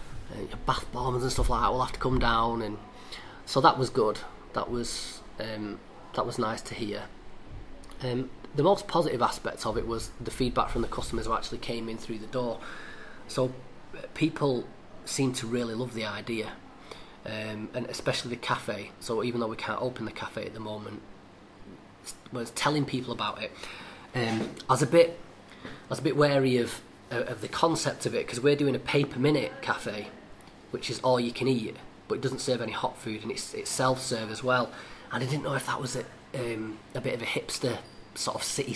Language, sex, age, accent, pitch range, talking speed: English, male, 30-49, British, 110-130 Hz, 210 wpm